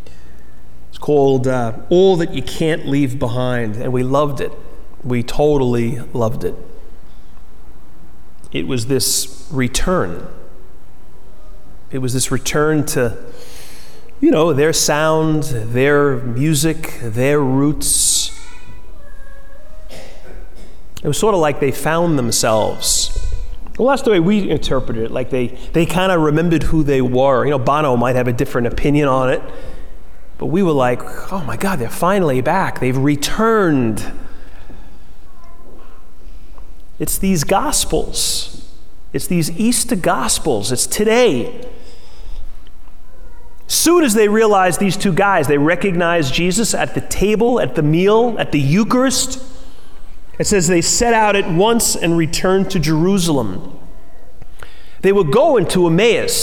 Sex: male